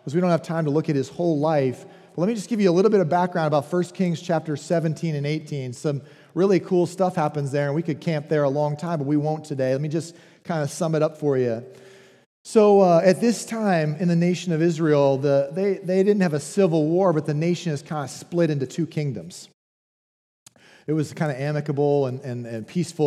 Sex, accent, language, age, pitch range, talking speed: male, American, English, 40-59, 150-185 Hz, 240 wpm